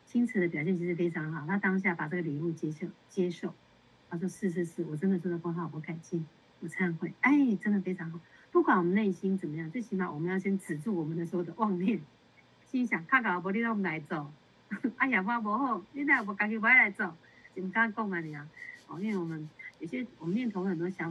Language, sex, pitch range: Chinese, female, 165-205 Hz